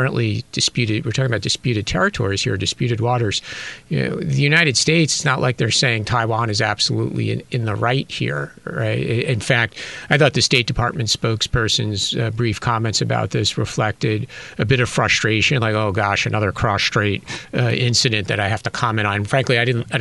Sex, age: male, 50-69